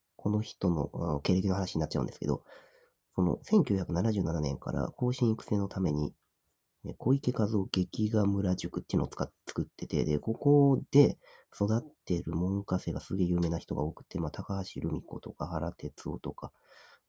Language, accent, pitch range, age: Japanese, native, 85-115 Hz, 40-59